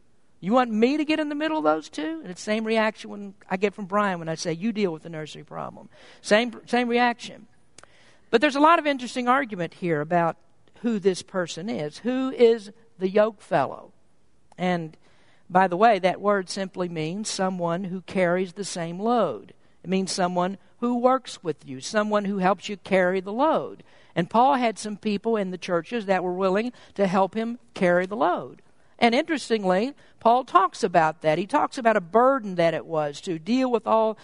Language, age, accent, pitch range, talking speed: English, 50-69, American, 185-240 Hz, 200 wpm